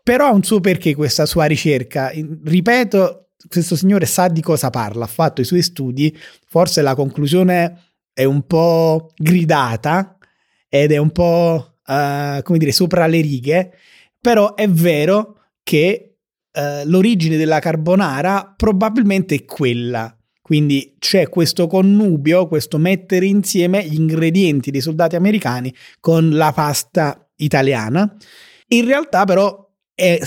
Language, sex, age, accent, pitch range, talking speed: Italian, male, 30-49, native, 145-185 Hz, 130 wpm